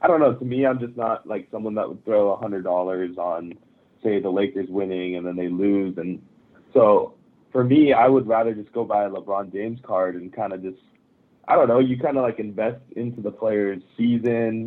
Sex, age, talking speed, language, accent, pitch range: male, 20-39, 215 wpm, English, American, 100-115 Hz